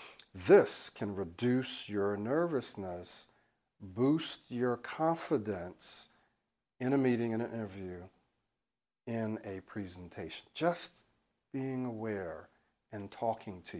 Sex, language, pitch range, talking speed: male, English, 100-125 Hz, 100 wpm